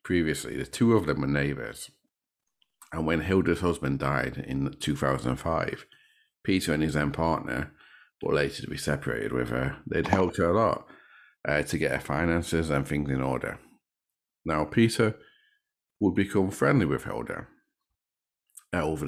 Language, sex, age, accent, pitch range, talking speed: English, male, 50-69, British, 70-90 Hz, 155 wpm